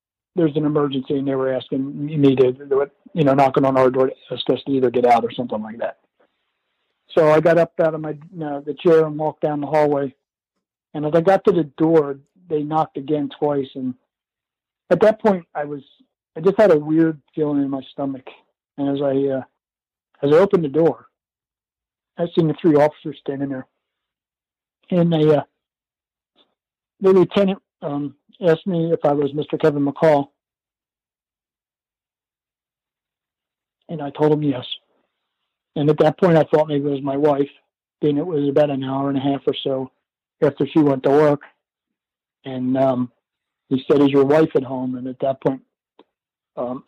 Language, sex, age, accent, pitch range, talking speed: English, male, 60-79, American, 135-155 Hz, 185 wpm